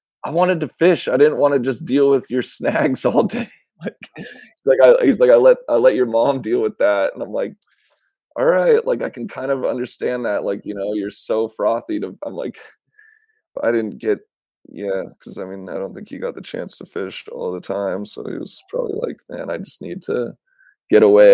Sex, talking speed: male, 230 wpm